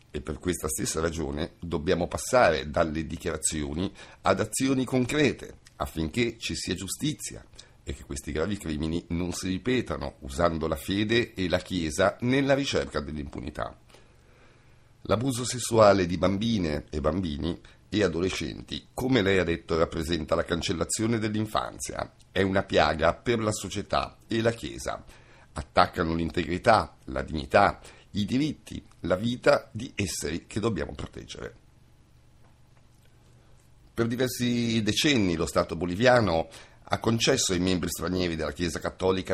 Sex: male